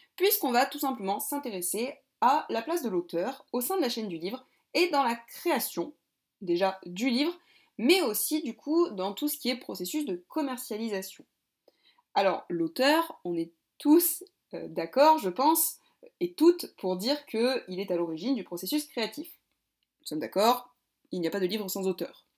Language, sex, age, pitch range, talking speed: French, female, 20-39, 200-315 Hz, 180 wpm